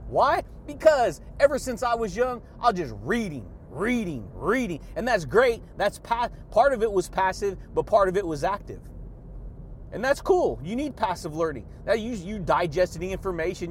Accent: American